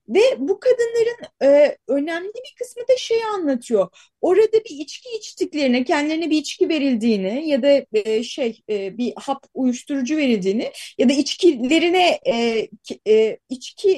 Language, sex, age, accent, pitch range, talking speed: Turkish, female, 30-49, native, 275-375 Hz, 140 wpm